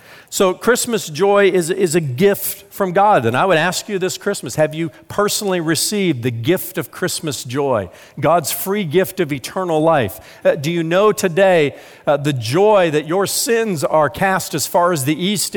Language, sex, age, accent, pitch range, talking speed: English, male, 50-69, American, 135-190 Hz, 190 wpm